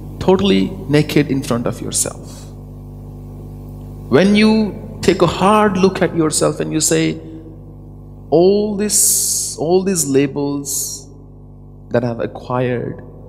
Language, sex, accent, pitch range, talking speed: English, male, Indian, 125-150 Hz, 115 wpm